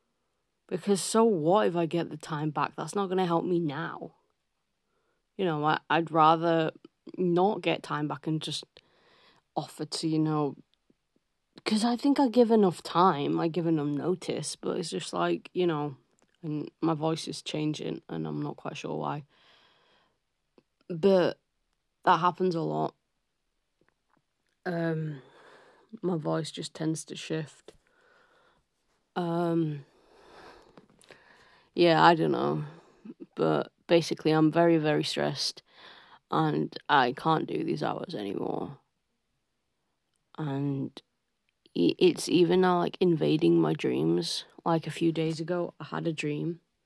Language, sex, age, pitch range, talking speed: English, female, 20-39, 150-180 Hz, 135 wpm